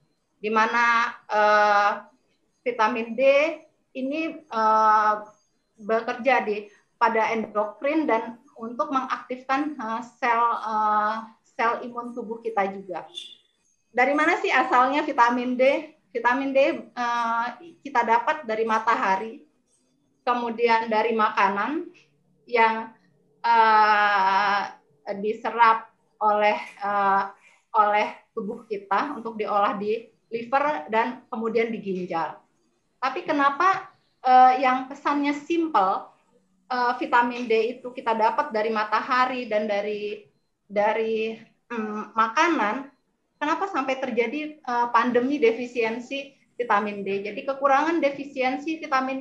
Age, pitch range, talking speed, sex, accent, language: 20-39, 215-265 Hz, 105 wpm, female, native, Indonesian